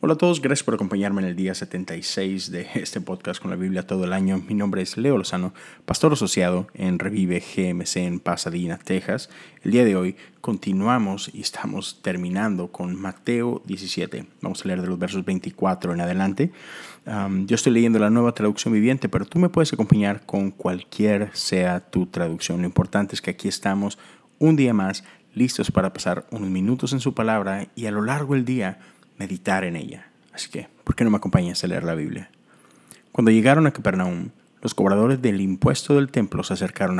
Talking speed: 195 wpm